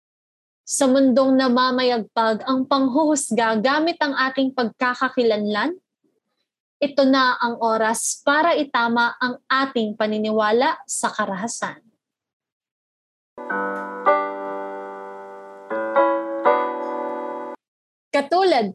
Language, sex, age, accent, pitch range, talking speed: Filipino, female, 20-39, native, 225-285 Hz, 65 wpm